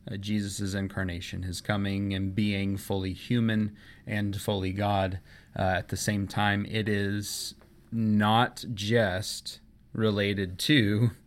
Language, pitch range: English, 95-105 Hz